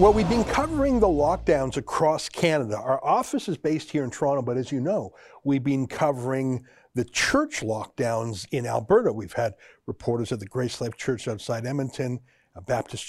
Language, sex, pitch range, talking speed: English, male, 120-160 Hz, 180 wpm